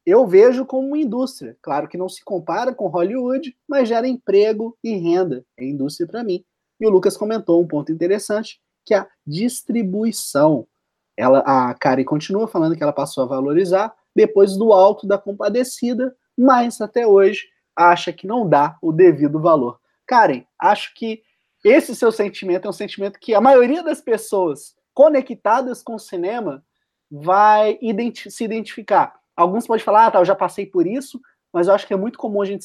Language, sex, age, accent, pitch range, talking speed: Portuguese, male, 20-39, Brazilian, 170-235 Hz, 180 wpm